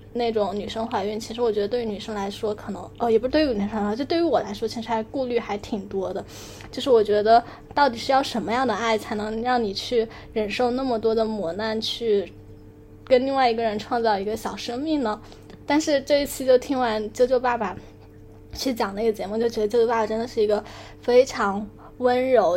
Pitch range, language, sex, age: 210-255 Hz, Chinese, female, 10-29